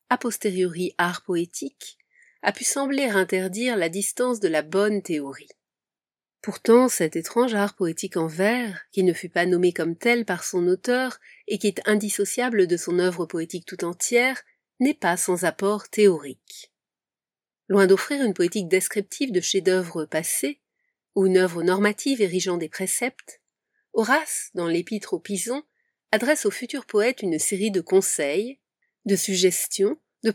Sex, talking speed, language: female, 155 wpm, French